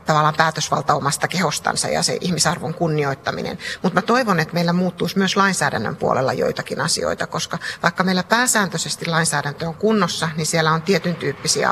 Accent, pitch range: native, 155-180 Hz